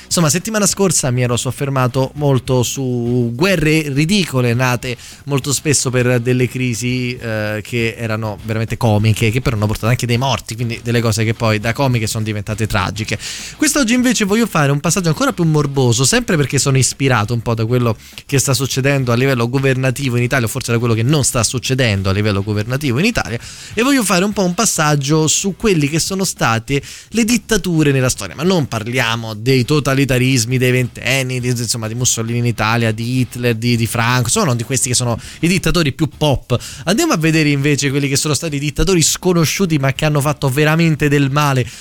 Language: Italian